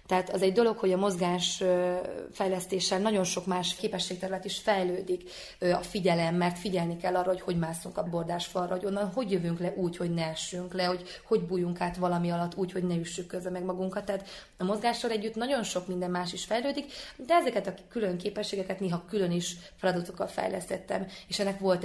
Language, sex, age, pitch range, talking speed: Hungarian, female, 20-39, 180-200 Hz, 190 wpm